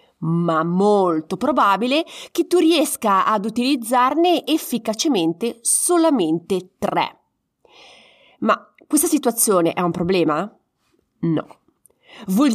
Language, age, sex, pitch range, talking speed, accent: Italian, 30-49, female, 200-295 Hz, 90 wpm, native